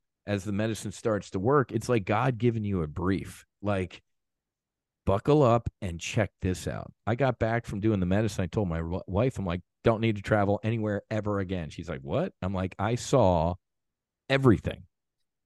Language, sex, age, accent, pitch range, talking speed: English, male, 40-59, American, 95-125 Hz, 185 wpm